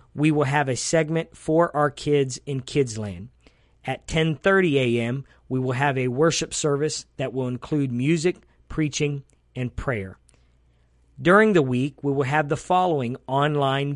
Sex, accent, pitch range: male, American, 120-155 Hz